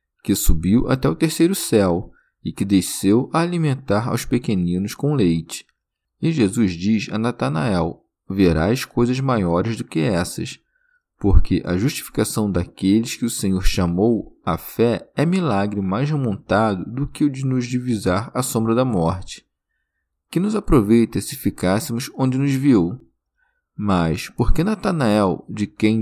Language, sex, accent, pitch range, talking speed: Portuguese, male, Brazilian, 95-140 Hz, 150 wpm